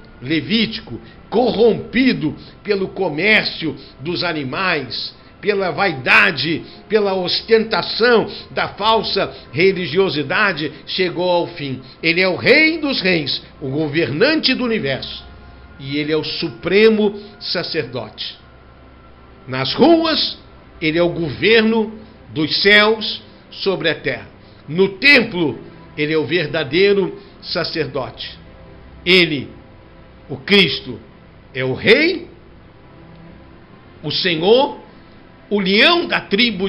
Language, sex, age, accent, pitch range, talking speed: Portuguese, male, 60-79, Brazilian, 145-205 Hz, 105 wpm